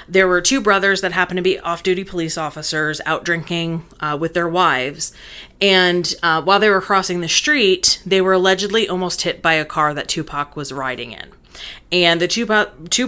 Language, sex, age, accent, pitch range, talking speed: English, female, 30-49, American, 160-195 Hz, 195 wpm